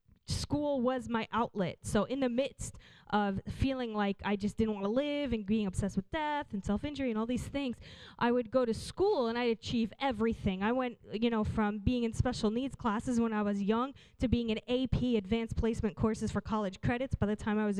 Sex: female